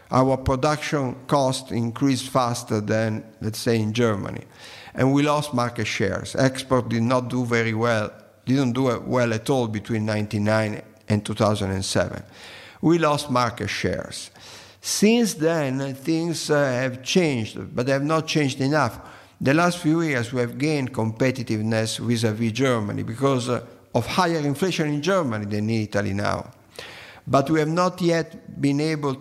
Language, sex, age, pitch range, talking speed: Dutch, male, 50-69, 115-140 Hz, 150 wpm